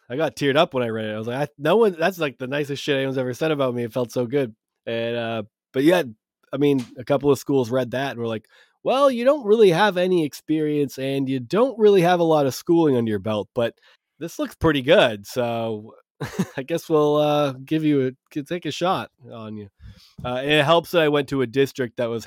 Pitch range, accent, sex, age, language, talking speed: 110-145 Hz, American, male, 20-39, English, 245 wpm